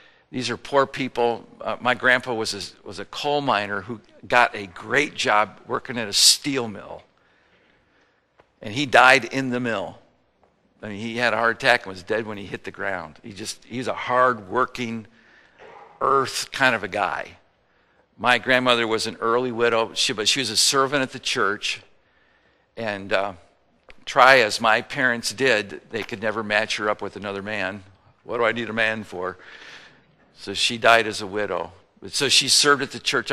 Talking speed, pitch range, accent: 185 wpm, 105-120 Hz, American